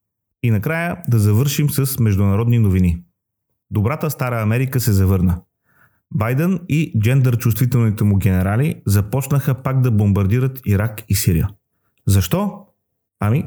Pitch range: 105-135 Hz